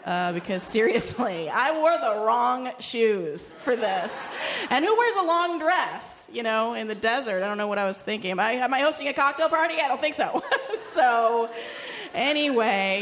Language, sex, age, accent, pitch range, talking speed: English, female, 30-49, American, 210-280 Hz, 195 wpm